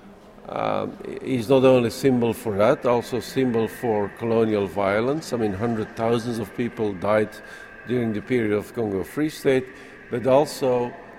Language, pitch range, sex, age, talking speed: English, 110-130 Hz, male, 50-69, 160 wpm